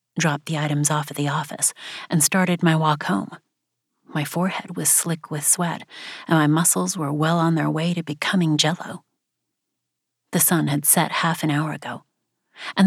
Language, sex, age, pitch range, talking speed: English, female, 30-49, 150-180 Hz, 175 wpm